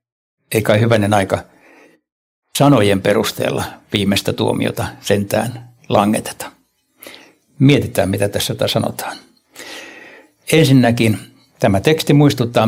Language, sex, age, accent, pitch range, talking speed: Finnish, male, 60-79, native, 105-125 Hz, 85 wpm